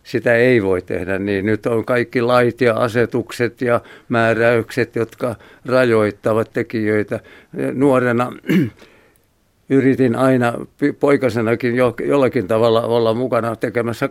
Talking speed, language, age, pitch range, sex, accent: 105 wpm, Finnish, 60-79, 110-125 Hz, male, native